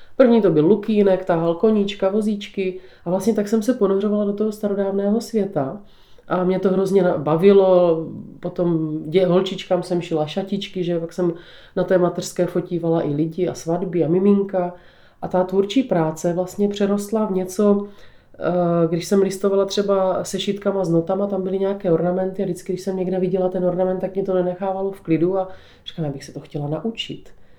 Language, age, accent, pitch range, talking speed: Czech, 30-49, native, 165-195 Hz, 175 wpm